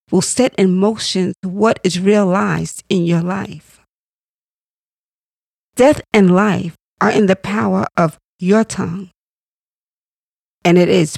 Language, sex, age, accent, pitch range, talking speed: English, female, 40-59, American, 175-215 Hz, 125 wpm